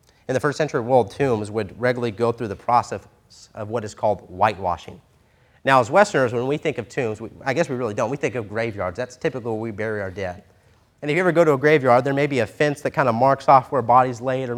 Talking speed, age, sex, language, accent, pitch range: 270 wpm, 30-49, male, English, American, 115-160 Hz